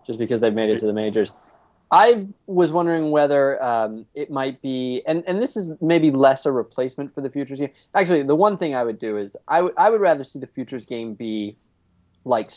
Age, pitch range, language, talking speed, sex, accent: 20-39, 100-130 Hz, English, 220 wpm, male, American